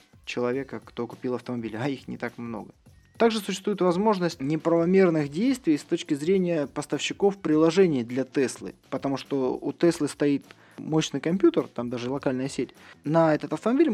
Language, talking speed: Russian, 150 wpm